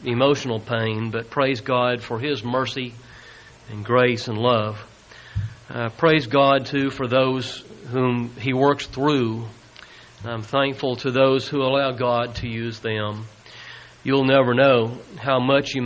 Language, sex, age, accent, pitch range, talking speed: English, male, 40-59, American, 115-130 Hz, 150 wpm